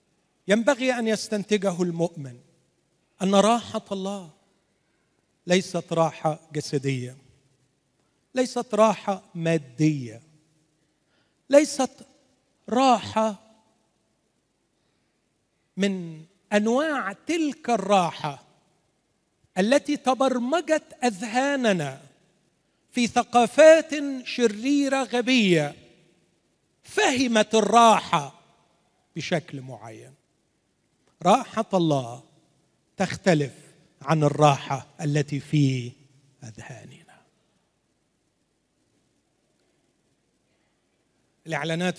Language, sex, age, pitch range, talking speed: Arabic, male, 40-59, 145-210 Hz, 55 wpm